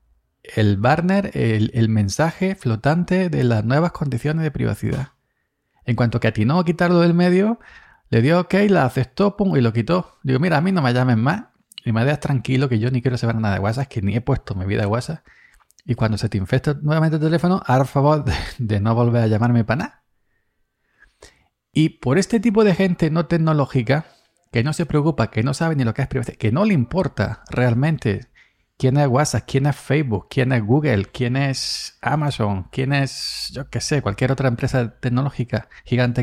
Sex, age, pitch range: male, 40-59, 120-170 Hz